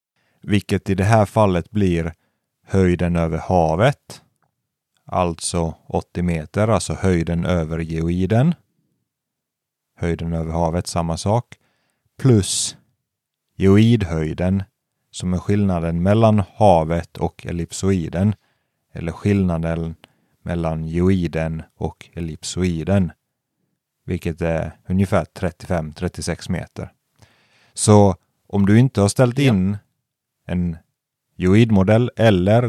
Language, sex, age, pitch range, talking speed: Swedish, male, 30-49, 85-105 Hz, 95 wpm